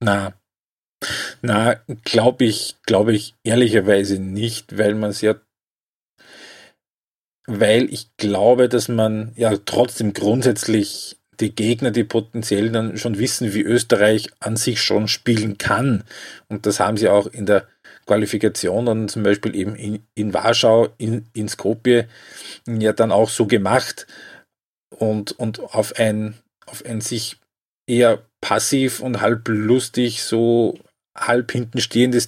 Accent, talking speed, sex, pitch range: Austrian, 135 wpm, male, 105-120 Hz